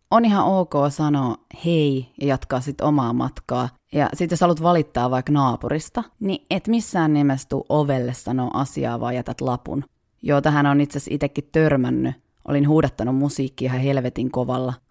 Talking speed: 155 wpm